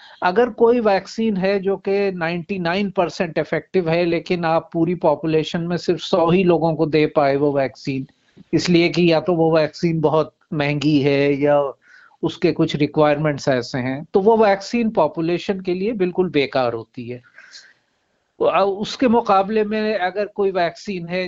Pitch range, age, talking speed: 145-185 Hz, 50-69, 155 wpm